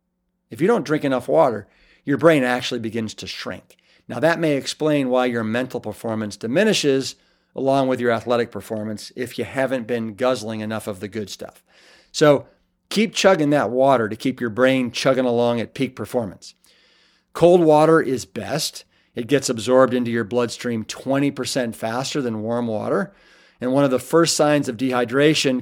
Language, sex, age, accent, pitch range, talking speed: English, male, 40-59, American, 120-155 Hz, 170 wpm